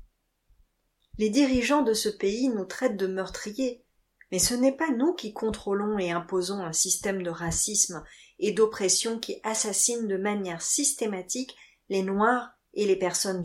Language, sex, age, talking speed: French, female, 40-59, 150 wpm